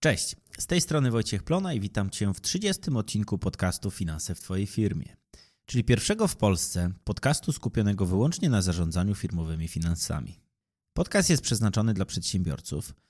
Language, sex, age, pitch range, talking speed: Polish, male, 30-49, 95-140 Hz, 150 wpm